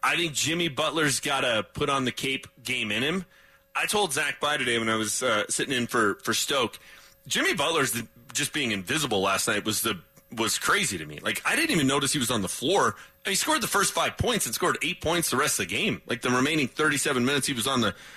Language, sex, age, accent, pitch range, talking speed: English, male, 30-49, American, 115-155 Hz, 250 wpm